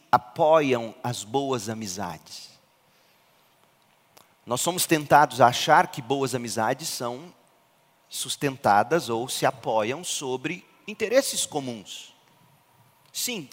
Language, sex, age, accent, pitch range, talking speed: Portuguese, male, 40-59, Brazilian, 120-180 Hz, 95 wpm